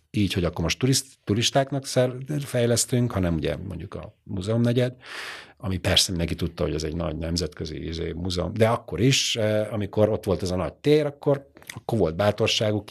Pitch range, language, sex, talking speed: 90-120 Hz, Hungarian, male, 165 wpm